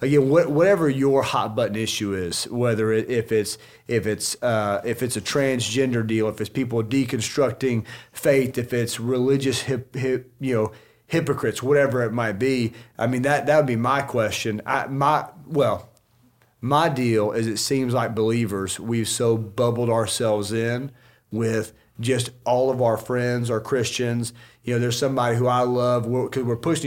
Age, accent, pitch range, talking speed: 40-59, American, 115-135 Hz, 175 wpm